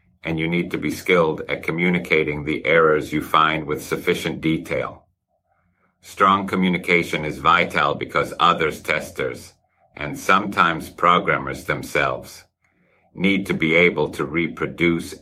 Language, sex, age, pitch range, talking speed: English, male, 50-69, 70-90 Hz, 125 wpm